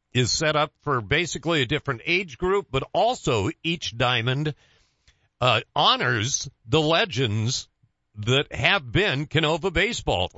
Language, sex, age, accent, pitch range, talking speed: English, male, 50-69, American, 135-200 Hz, 125 wpm